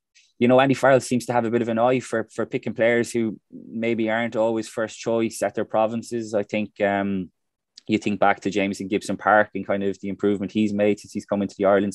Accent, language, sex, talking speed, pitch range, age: Irish, English, male, 240 wpm, 95-110 Hz, 20-39